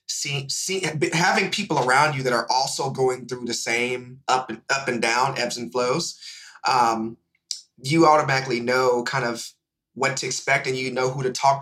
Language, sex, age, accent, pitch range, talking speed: English, male, 30-49, American, 120-140 Hz, 185 wpm